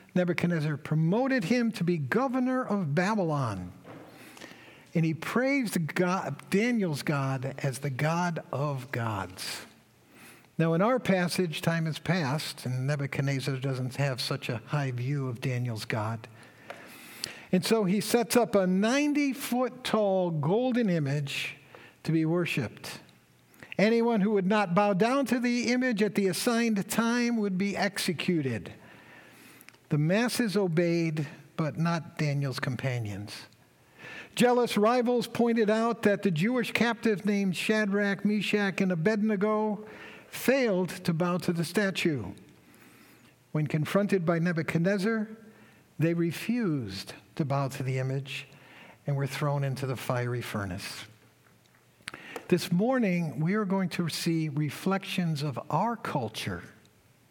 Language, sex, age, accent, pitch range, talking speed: English, male, 60-79, American, 140-215 Hz, 125 wpm